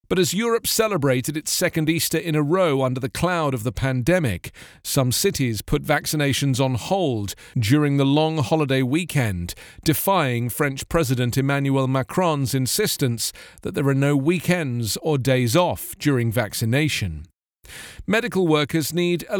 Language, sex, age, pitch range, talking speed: English, male, 40-59, 125-165 Hz, 145 wpm